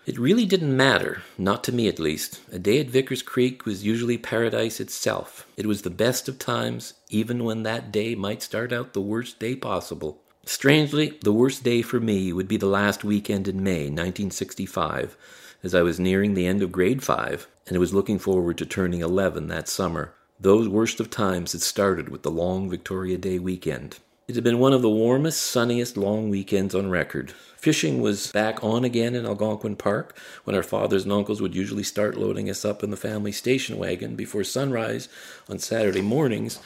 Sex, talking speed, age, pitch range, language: male, 195 wpm, 40-59, 95-115 Hz, English